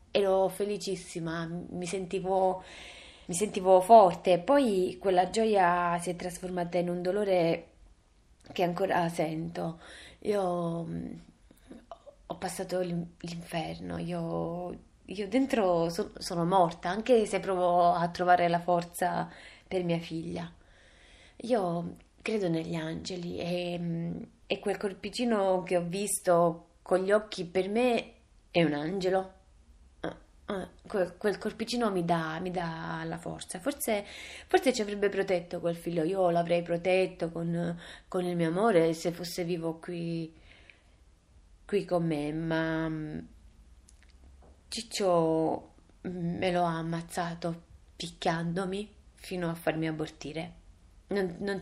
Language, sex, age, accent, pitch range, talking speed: Italian, female, 20-39, native, 160-190 Hz, 115 wpm